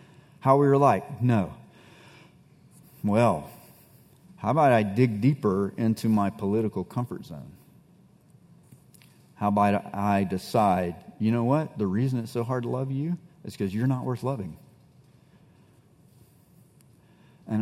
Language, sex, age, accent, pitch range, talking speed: English, male, 40-59, American, 105-135 Hz, 130 wpm